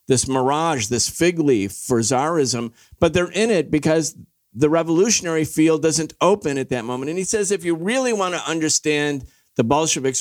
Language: English